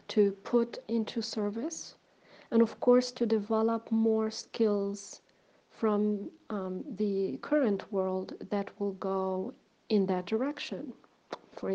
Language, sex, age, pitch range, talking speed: English, female, 40-59, 200-230 Hz, 120 wpm